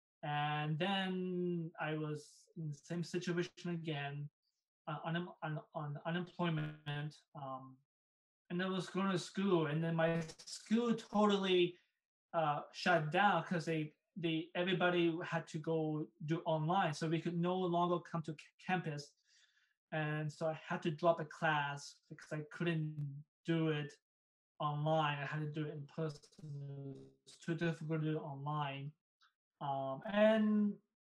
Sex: male